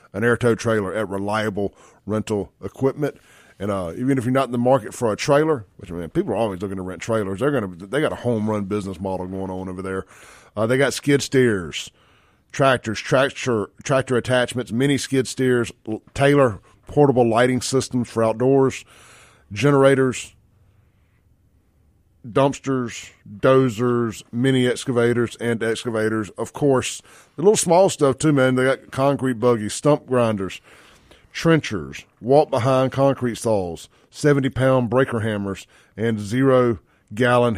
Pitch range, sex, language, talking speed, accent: 105-130 Hz, male, English, 155 wpm, American